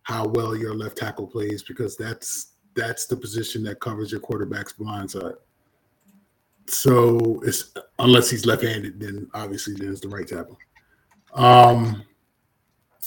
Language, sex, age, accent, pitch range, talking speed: English, male, 20-39, American, 115-130 Hz, 130 wpm